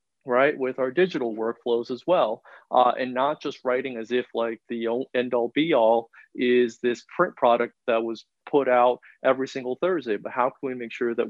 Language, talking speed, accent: English, 190 wpm, American